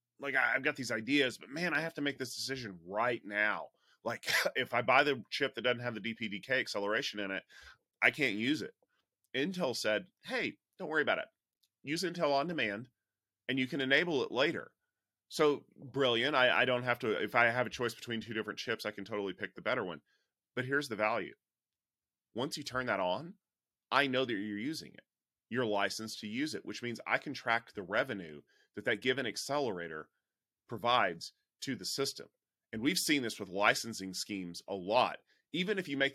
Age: 30-49